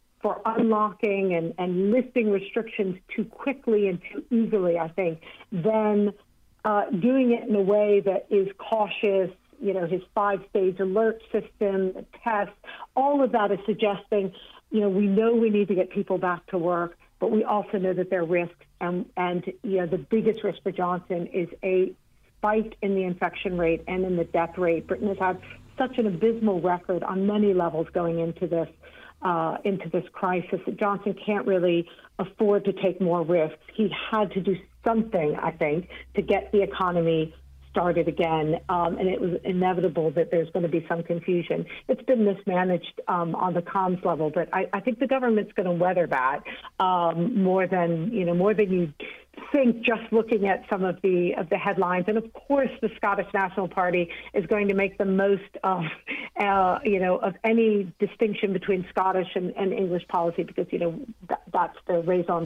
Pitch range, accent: 175-210 Hz, American